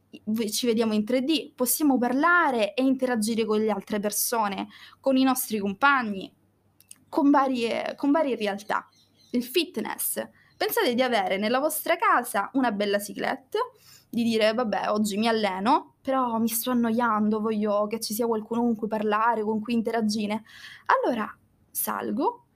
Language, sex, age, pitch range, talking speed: Italian, female, 20-39, 210-265 Hz, 145 wpm